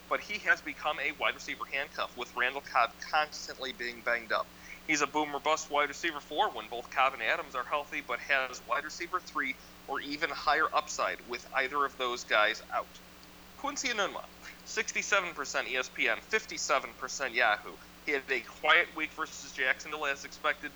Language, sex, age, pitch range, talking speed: English, male, 40-59, 125-170 Hz, 170 wpm